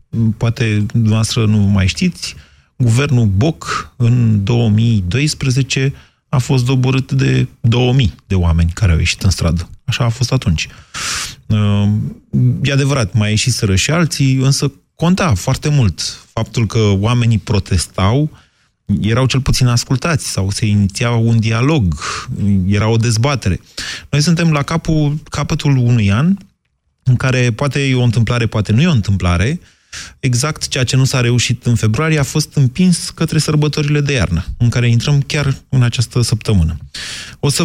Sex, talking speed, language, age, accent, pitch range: male, 150 wpm, Romanian, 30-49, native, 100-140 Hz